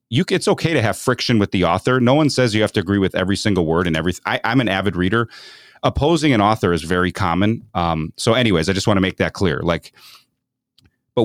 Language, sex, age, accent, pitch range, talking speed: English, male, 30-49, American, 95-120 Hz, 240 wpm